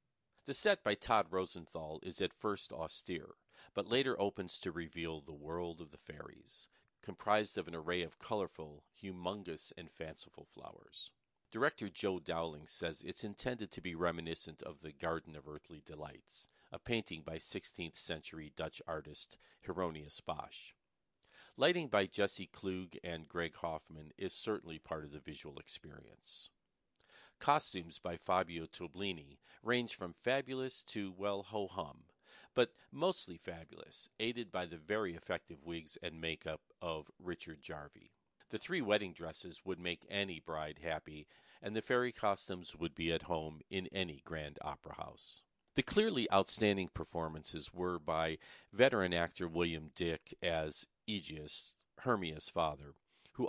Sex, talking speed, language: male, 140 wpm, English